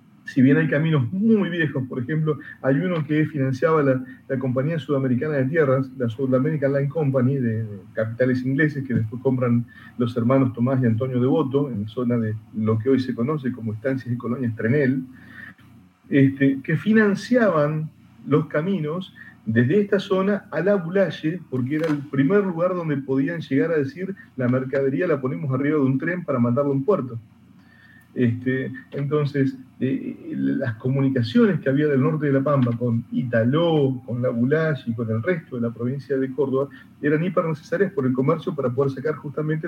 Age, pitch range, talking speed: 40-59, 125-155 Hz, 180 wpm